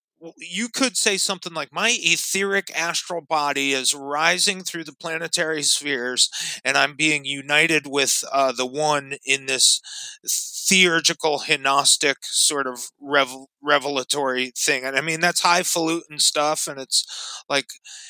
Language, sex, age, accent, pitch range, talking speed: English, male, 30-49, American, 135-170 Hz, 140 wpm